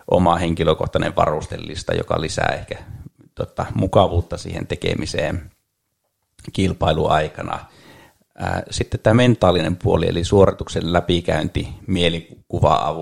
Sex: male